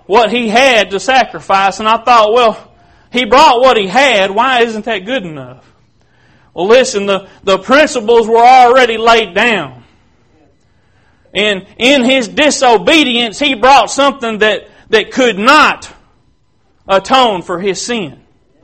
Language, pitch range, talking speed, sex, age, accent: English, 215-275 Hz, 140 wpm, male, 40-59, American